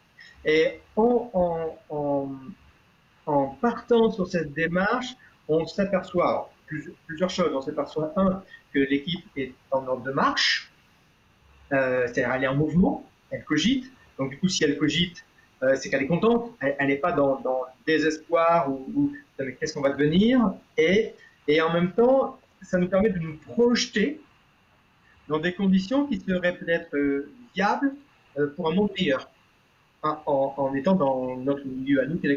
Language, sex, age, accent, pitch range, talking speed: French, male, 40-59, French, 145-200 Hz, 165 wpm